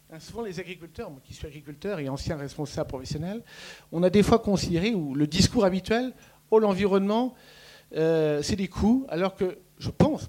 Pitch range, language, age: 155-210 Hz, French, 50-69